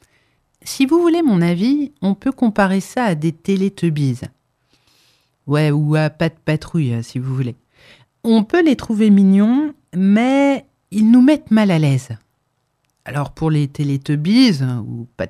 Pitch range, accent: 140-220 Hz, French